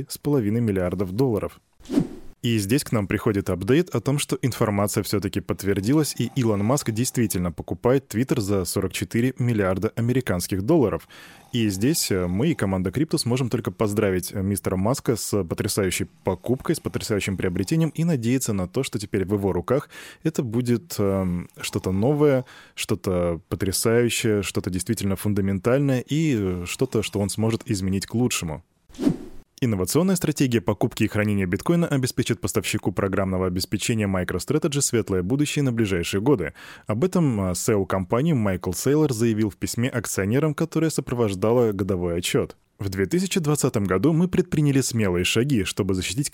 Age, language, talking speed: 20-39, Russian, 140 wpm